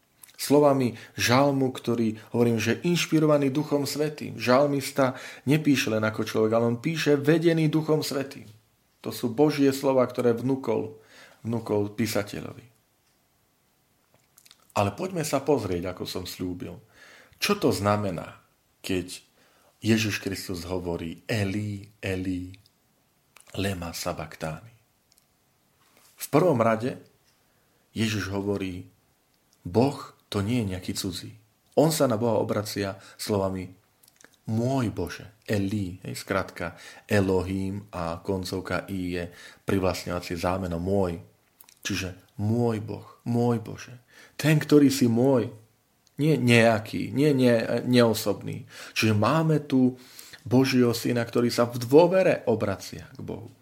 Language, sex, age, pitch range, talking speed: Slovak, male, 40-59, 100-130 Hz, 110 wpm